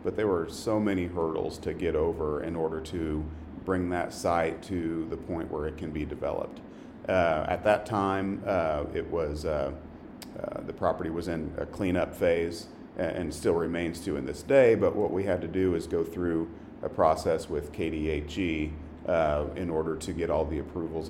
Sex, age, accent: male, 40-59, American